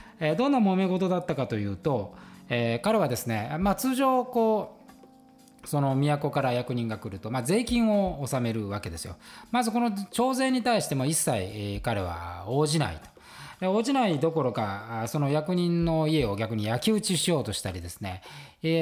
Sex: male